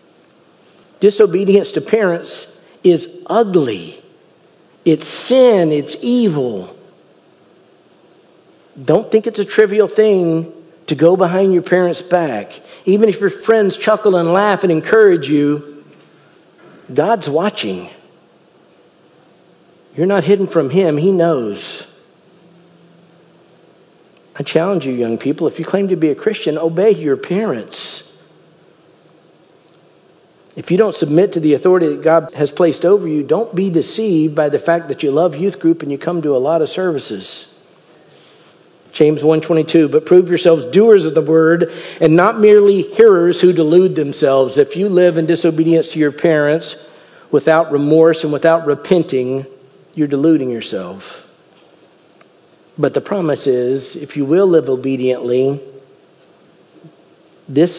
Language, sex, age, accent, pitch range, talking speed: English, male, 50-69, American, 150-190 Hz, 135 wpm